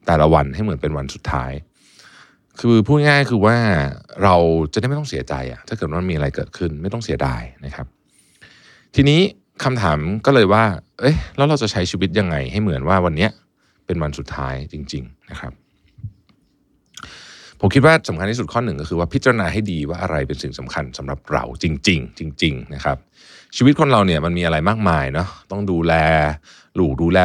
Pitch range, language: 80-110 Hz, Thai